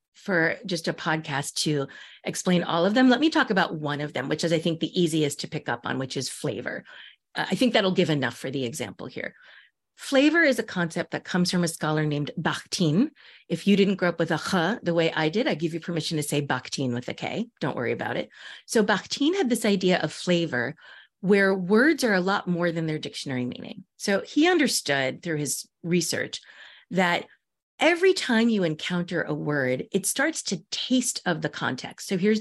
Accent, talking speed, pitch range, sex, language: American, 215 wpm, 155-200 Hz, female, English